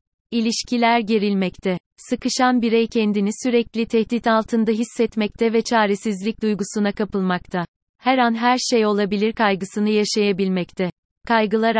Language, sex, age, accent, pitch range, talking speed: Turkish, female, 30-49, native, 195-230 Hz, 105 wpm